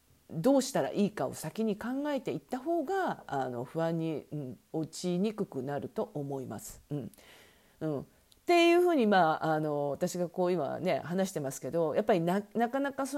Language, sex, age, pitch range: Japanese, female, 40-59, 145-240 Hz